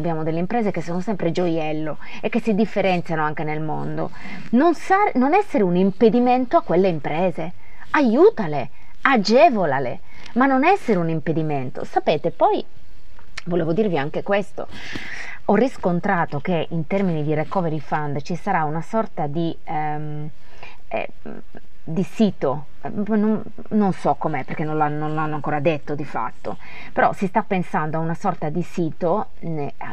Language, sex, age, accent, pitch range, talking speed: Italian, female, 20-39, native, 160-205 Hz, 150 wpm